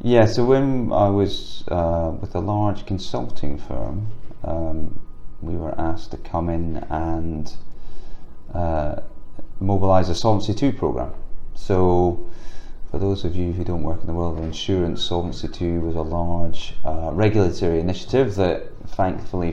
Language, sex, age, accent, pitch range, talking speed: English, male, 30-49, British, 85-105 Hz, 150 wpm